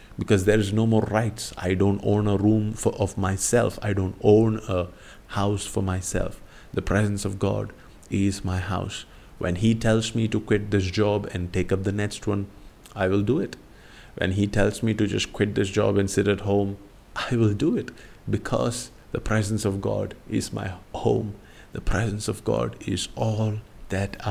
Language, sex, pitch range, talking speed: English, male, 95-105 Hz, 190 wpm